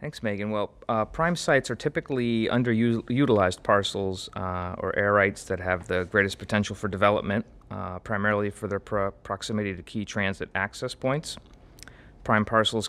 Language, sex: English, male